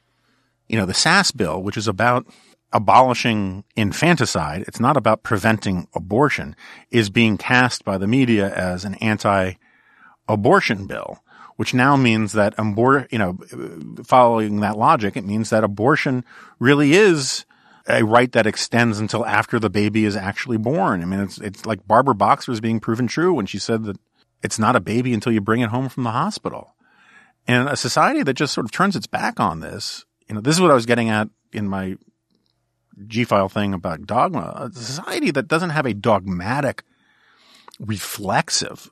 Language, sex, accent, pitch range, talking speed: English, male, American, 100-125 Hz, 175 wpm